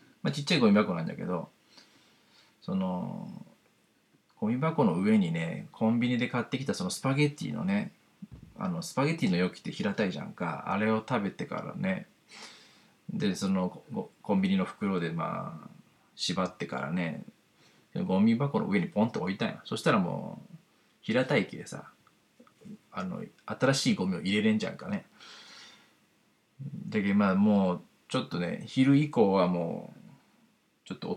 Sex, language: male, Japanese